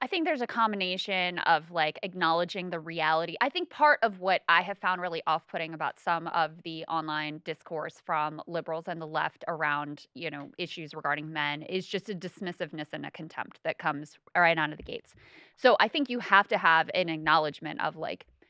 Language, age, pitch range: English, 20-39, 160-200 Hz